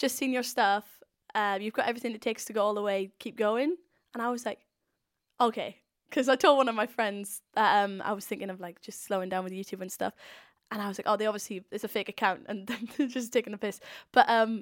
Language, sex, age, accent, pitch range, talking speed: English, female, 10-29, British, 205-245 Hz, 250 wpm